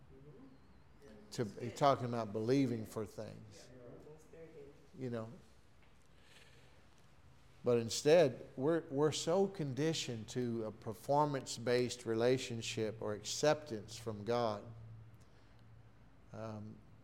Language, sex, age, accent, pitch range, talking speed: English, male, 50-69, American, 110-130 Hz, 80 wpm